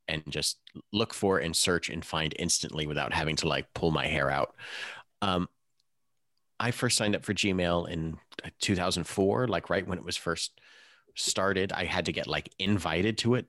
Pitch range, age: 80-105 Hz, 30-49